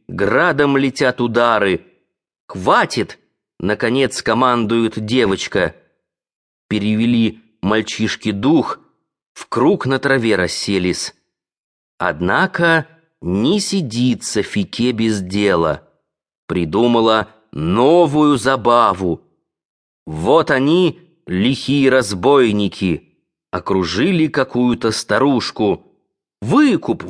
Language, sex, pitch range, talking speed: English, male, 105-155 Hz, 70 wpm